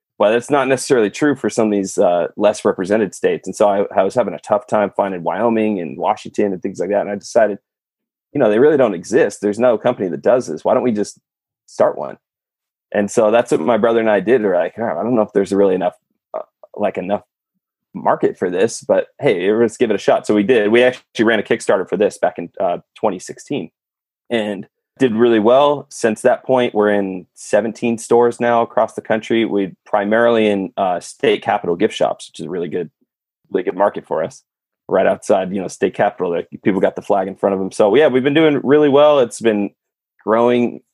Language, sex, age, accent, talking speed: English, male, 20-39, American, 225 wpm